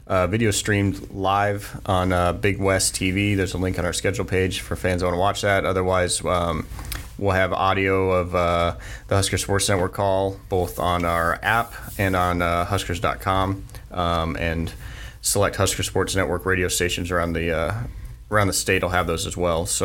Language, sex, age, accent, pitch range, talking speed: English, male, 30-49, American, 90-105 Hz, 185 wpm